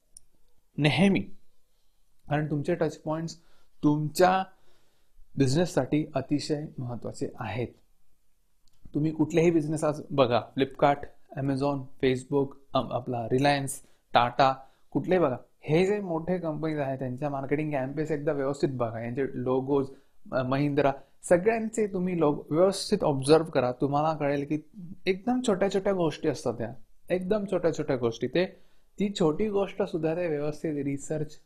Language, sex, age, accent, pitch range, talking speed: Marathi, male, 30-49, native, 135-170 Hz, 120 wpm